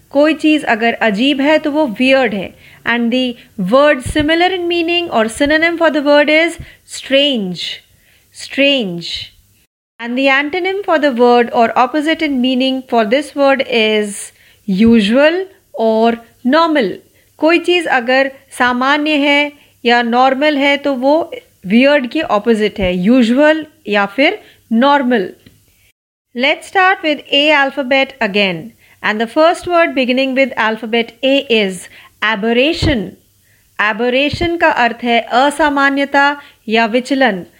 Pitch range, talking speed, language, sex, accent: 230-295 Hz, 130 wpm, Marathi, female, native